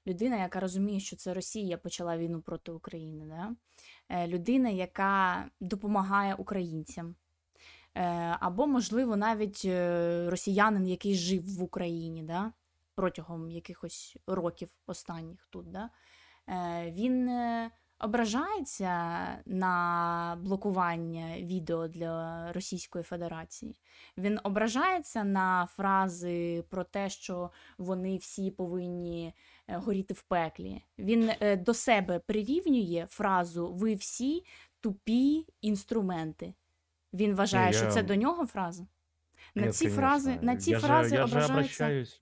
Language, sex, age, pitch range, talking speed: Ukrainian, female, 20-39, 170-220 Hz, 105 wpm